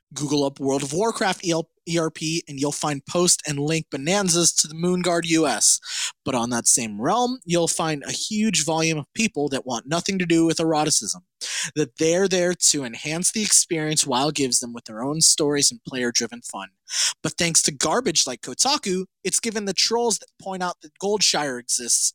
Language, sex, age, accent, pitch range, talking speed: English, male, 20-39, American, 145-195 Hz, 185 wpm